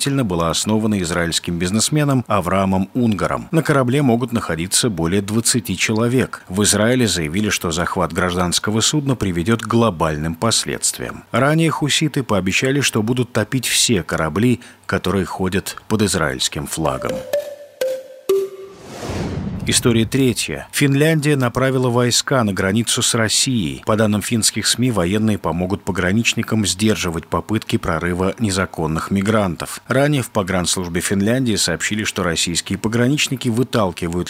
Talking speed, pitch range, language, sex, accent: 115 wpm, 95-130 Hz, Russian, male, native